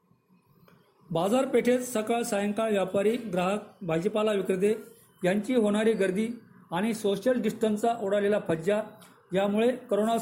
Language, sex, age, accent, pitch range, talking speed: Marathi, male, 40-59, native, 195-225 Hz, 100 wpm